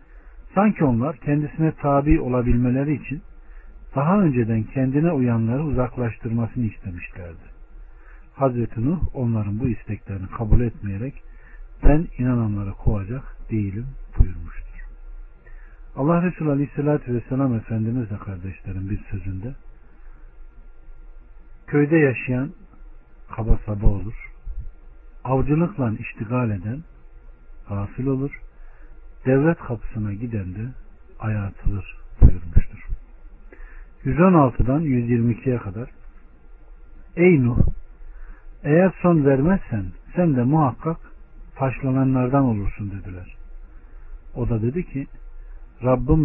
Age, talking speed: 60-79, 90 wpm